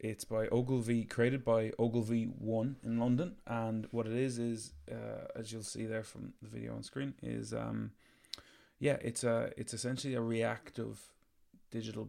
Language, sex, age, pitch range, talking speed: English, male, 20-39, 105-115 Hz, 170 wpm